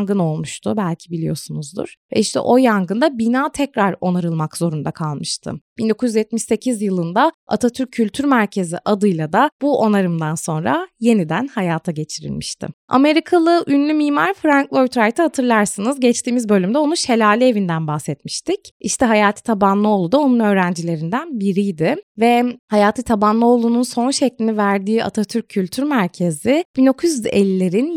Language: Turkish